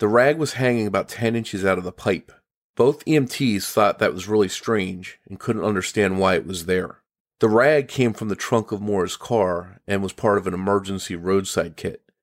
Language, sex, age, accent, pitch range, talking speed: English, male, 40-59, American, 95-115 Hz, 205 wpm